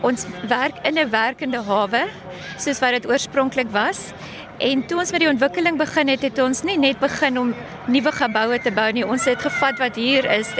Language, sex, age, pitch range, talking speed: English, female, 20-39, 235-285 Hz, 205 wpm